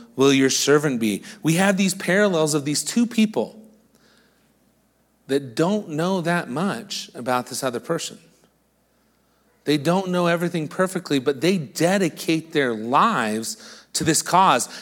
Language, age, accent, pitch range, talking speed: English, 40-59, American, 135-215 Hz, 140 wpm